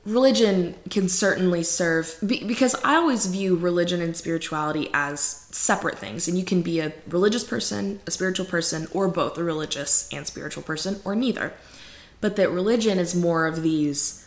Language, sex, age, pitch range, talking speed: English, female, 20-39, 160-185 Hz, 170 wpm